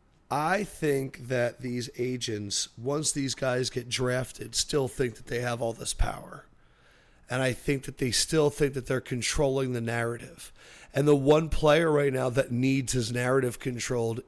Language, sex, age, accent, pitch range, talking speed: English, male, 40-59, American, 125-155 Hz, 170 wpm